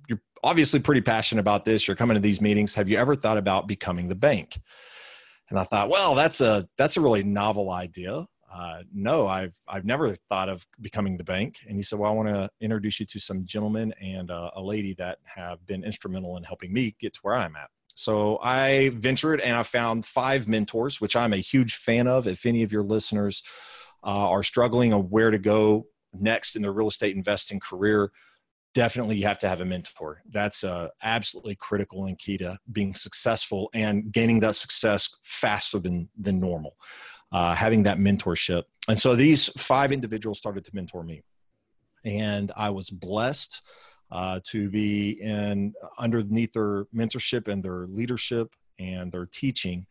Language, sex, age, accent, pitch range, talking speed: English, male, 30-49, American, 95-110 Hz, 190 wpm